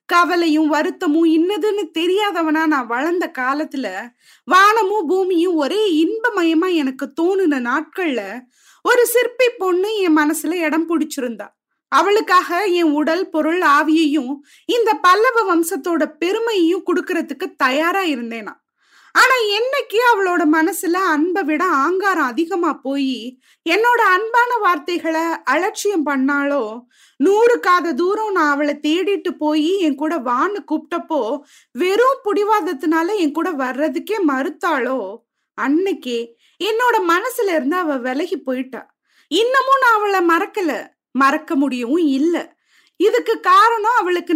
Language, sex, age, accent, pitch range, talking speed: Tamil, female, 20-39, native, 300-385 Hz, 110 wpm